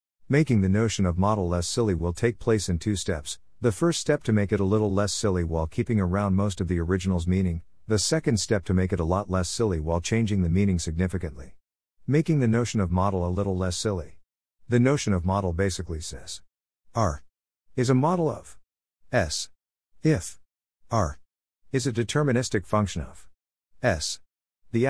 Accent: American